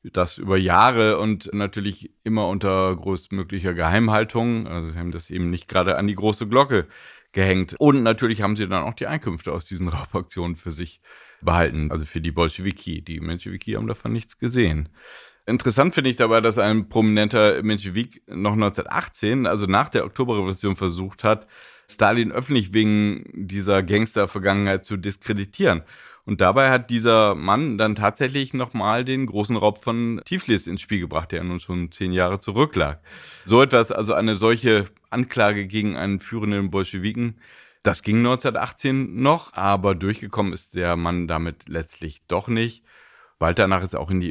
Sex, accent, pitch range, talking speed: male, German, 90-110 Hz, 165 wpm